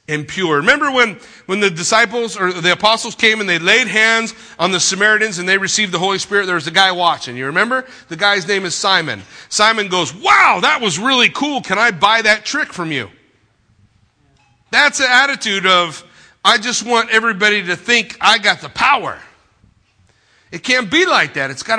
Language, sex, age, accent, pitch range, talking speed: English, male, 40-59, American, 145-215 Hz, 195 wpm